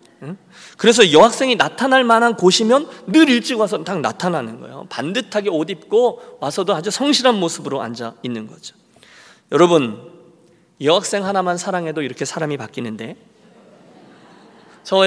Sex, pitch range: male, 155-240 Hz